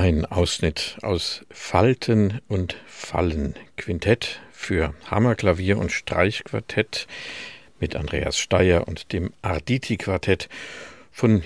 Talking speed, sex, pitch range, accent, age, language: 95 wpm, male, 90-120 Hz, German, 50-69, German